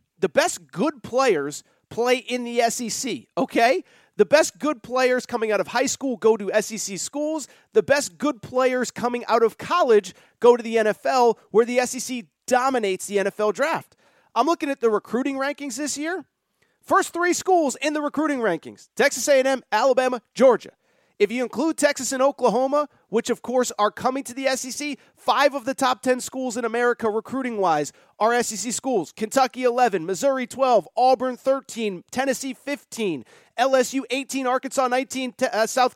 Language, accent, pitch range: English, American, 215-275 Hz